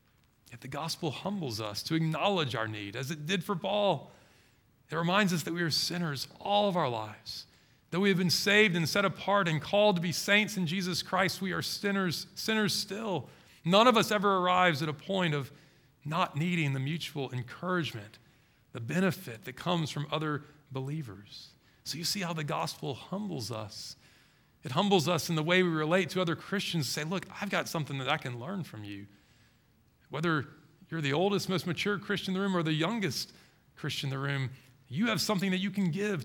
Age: 40-59